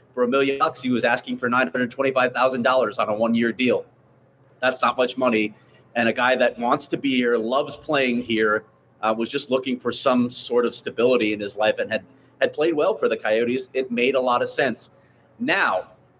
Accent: American